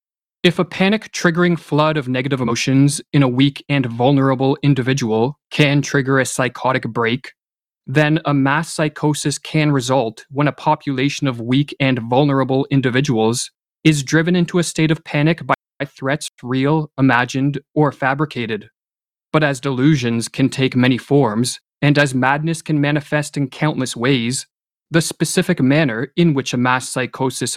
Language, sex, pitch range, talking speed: English, male, 130-155 Hz, 150 wpm